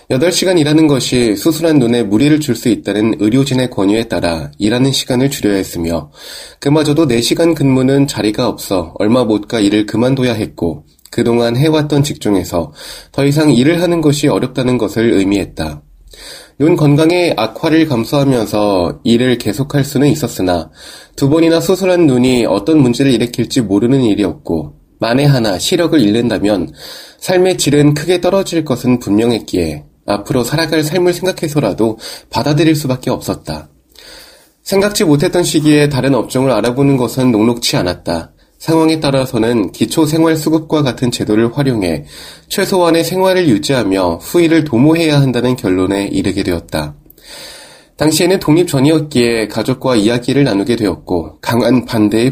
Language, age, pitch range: Korean, 20-39, 110-155 Hz